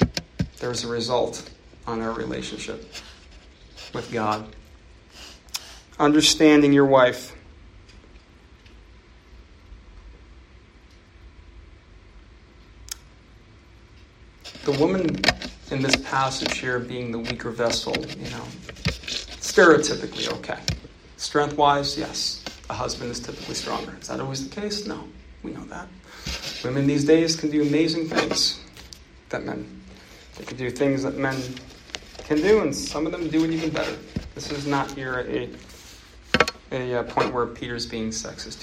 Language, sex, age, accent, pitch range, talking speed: English, male, 40-59, American, 85-140 Hz, 120 wpm